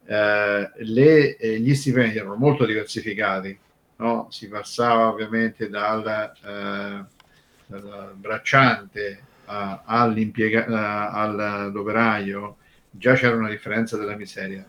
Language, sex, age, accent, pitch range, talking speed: Italian, male, 50-69, native, 100-120 Hz, 100 wpm